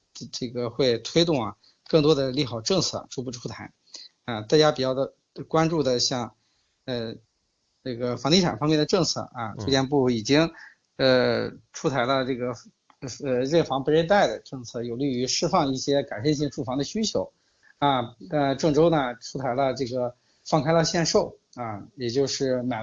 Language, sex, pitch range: Chinese, male, 125-155 Hz